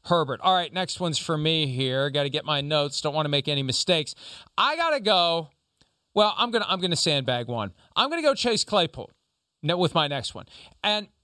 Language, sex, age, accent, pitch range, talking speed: English, male, 40-59, American, 140-190 Hz, 230 wpm